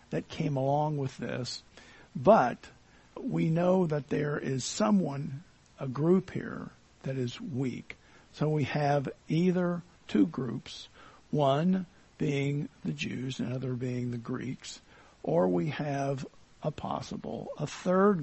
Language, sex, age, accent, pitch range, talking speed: English, male, 50-69, American, 130-170 Hz, 130 wpm